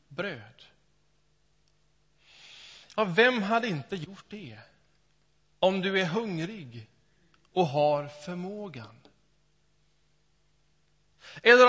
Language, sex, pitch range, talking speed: Swedish, male, 150-225 Hz, 70 wpm